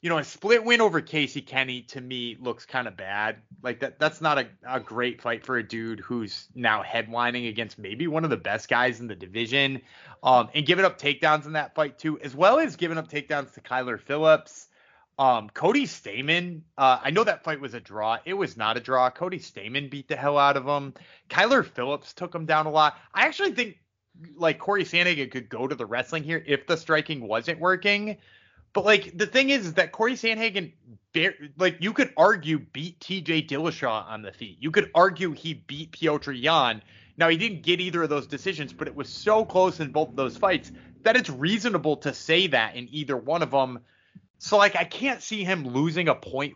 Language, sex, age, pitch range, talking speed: English, male, 30-49, 130-175 Hz, 215 wpm